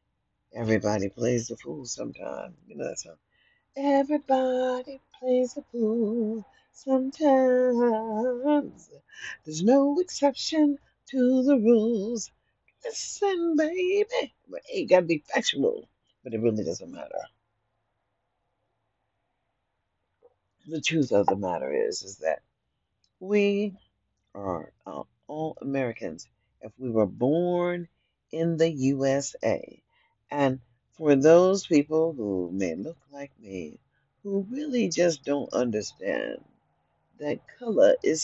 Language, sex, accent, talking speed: English, female, American, 105 wpm